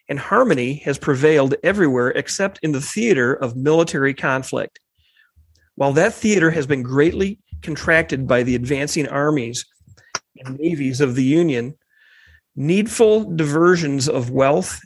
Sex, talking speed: male, 130 wpm